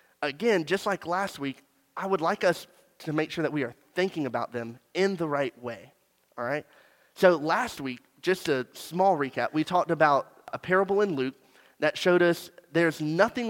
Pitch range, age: 130-180 Hz, 30-49